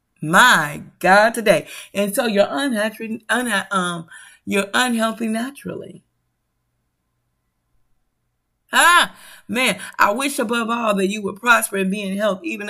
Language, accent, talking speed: English, American, 130 wpm